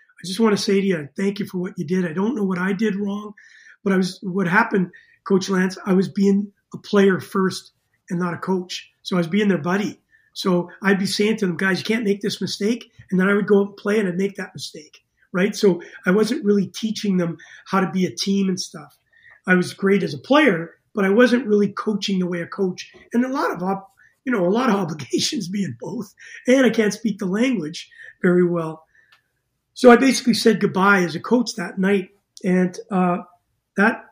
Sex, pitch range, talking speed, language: male, 180-205 Hz, 230 wpm, English